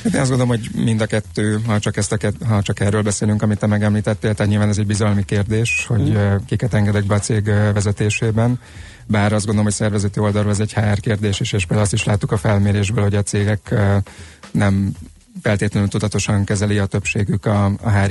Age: 30-49